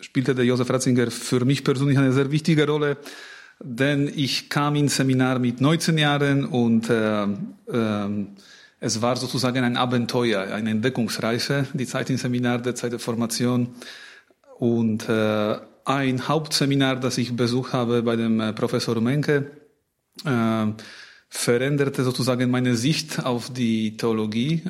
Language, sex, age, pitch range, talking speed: German, male, 30-49, 115-130 Hz, 140 wpm